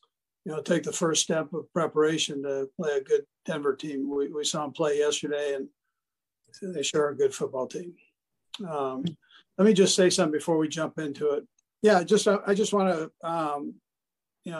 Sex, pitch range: male, 140-185 Hz